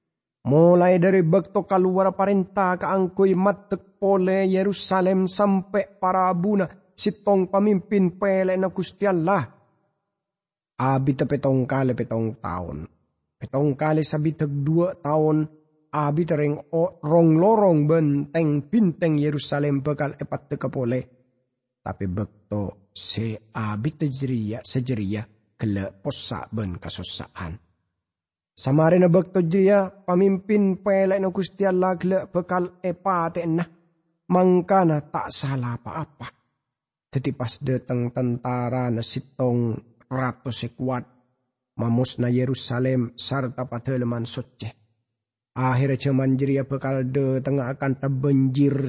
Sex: male